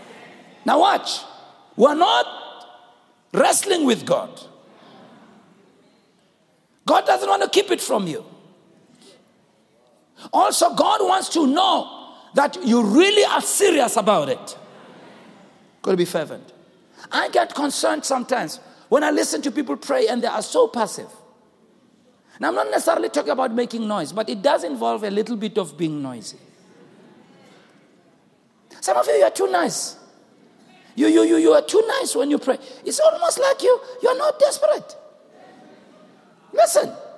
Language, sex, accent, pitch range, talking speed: English, male, South African, 230-320 Hz, 145 wpm